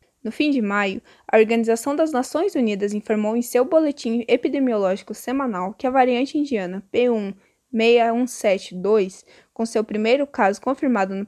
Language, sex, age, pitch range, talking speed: Portuguese, female, 10-29, 210-255 Hz, 140 wpm